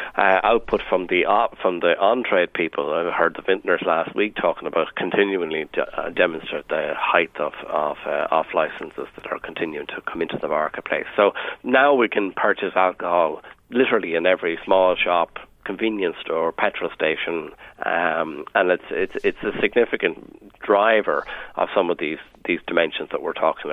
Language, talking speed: English, 170 wpm